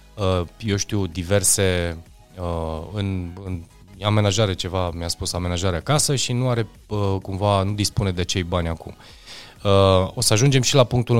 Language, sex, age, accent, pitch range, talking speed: Romanian, male, 20-39, native, 95-120 Hz, 145 wpm